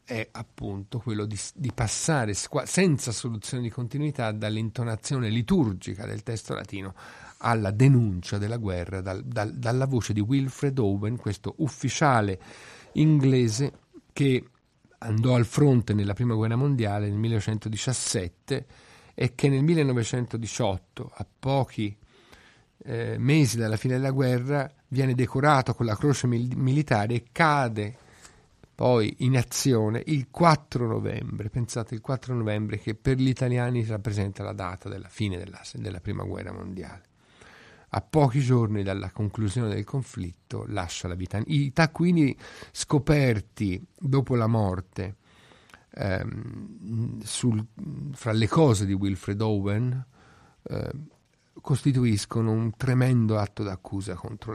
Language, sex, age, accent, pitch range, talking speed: Italian, male, 50-69, native, 105-130 Hz, 120 wpm